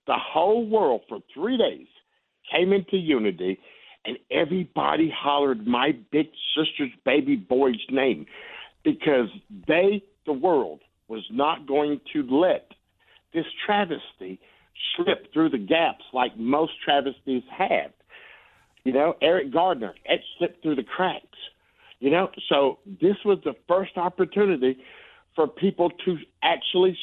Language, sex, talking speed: English, male, 130 wpm